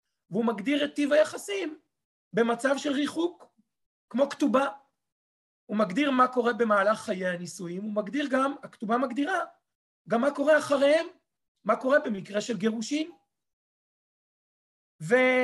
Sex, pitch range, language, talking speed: male, 210-260 Hz, Hebrew, 125 wpm